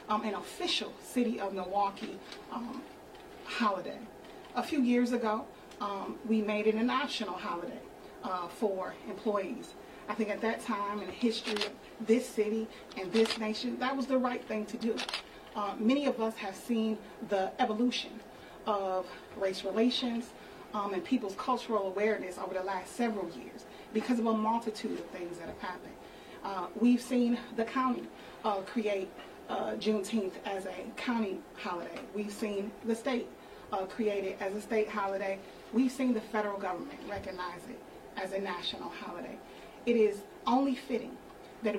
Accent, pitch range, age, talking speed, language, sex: American, 195-235 Hz, 30-49, 160 wpm, English, female